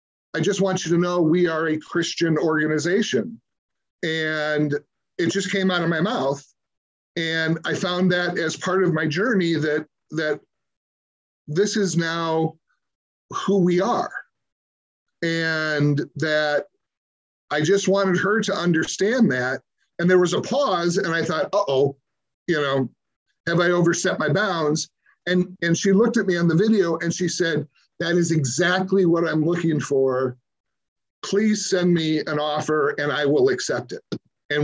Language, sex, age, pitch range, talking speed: English, male, 50-69, 150-185 Hz, 160 wpm